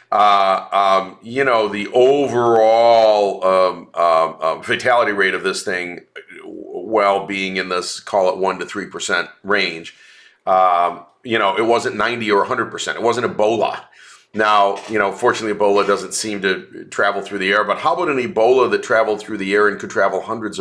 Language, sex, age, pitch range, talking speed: English, male, 40-59, 95-140 Hz, 180 wpm